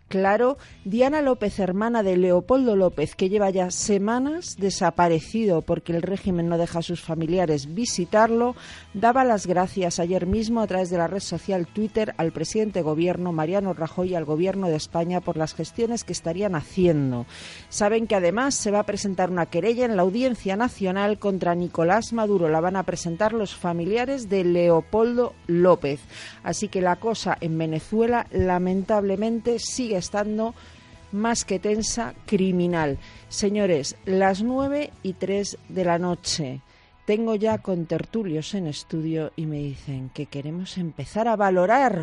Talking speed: 155 wpm